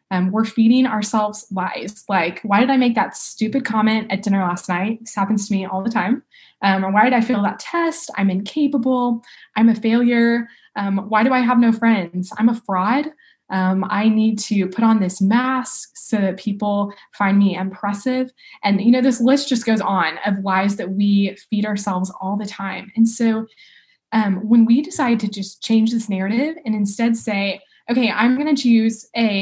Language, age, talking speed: English, 10-29, 200 wpm